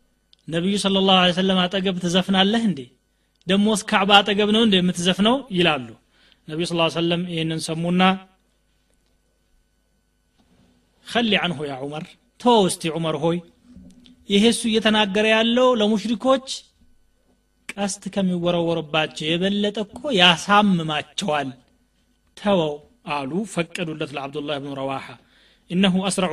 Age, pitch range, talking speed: 30-49, 160-200 Hz, 100 wpm